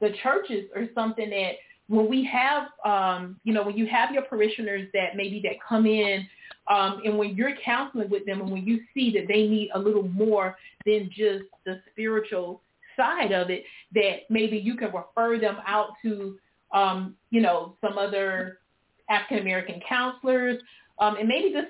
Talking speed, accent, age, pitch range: 175 wpm, American, 30-49, 200-235 Hz